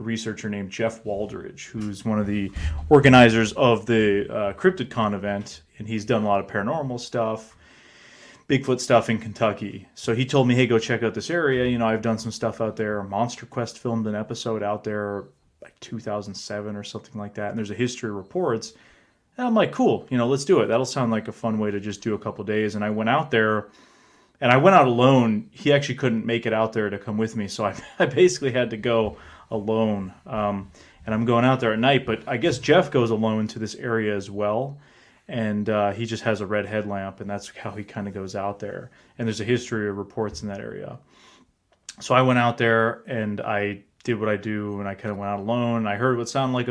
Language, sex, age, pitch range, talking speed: English, male, 30-49, 105-120 Hz, 235 wpm